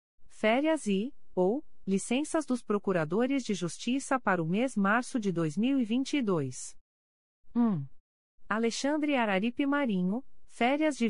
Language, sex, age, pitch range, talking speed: Portuguese, female, 40-59, 175-255 Hz, 110 wpm